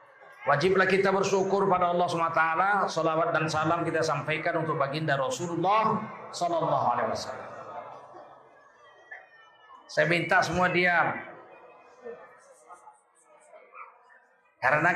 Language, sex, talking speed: Indonesian, male, 90 wpm